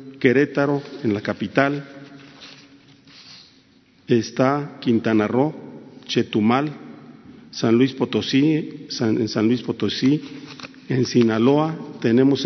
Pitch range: 120-145 Hz